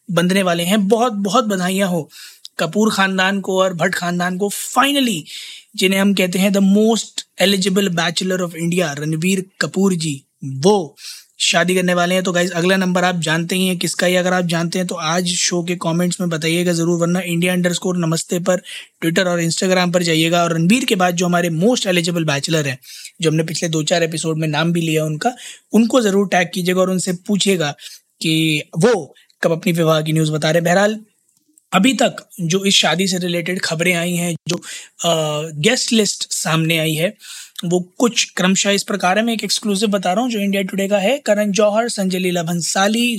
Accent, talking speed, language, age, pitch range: native, 125 wpm, Hindi, 20-39, 170-205 Hz